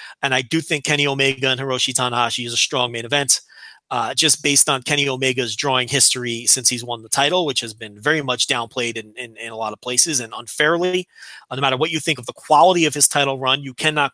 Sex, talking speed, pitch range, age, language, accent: male, 240 wpm, 130-175 Hz, 30-49, English, American